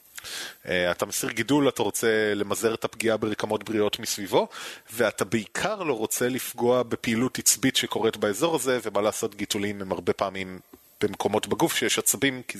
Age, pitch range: 30-49, 100-120 Hz